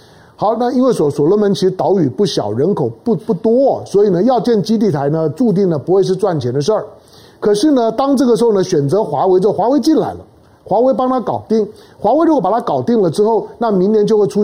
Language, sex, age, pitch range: Chinese, male, 50-69, 175-230 Hz